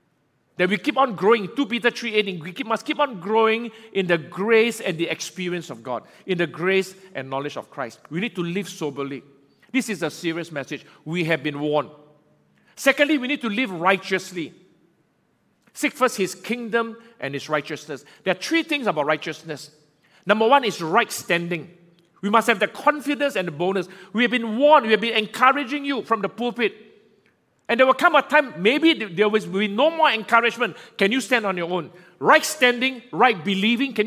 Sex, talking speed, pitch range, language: male, 195 wpm, 175-245 Hz, English